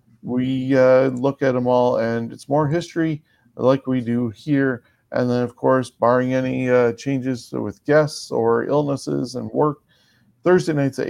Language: English